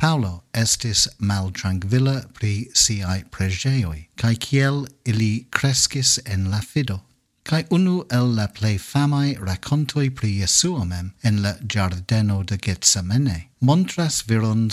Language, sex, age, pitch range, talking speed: English, male, 50-69, 100-140 Hz, 120 wpm